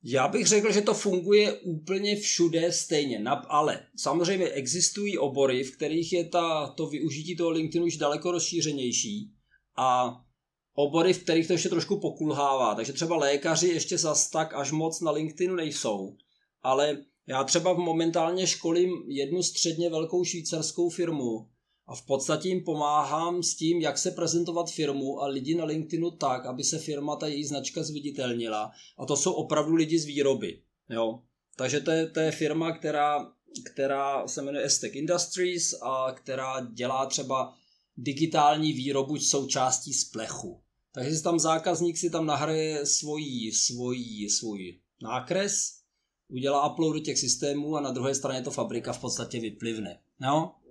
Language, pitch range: Czech, 135-170 Hz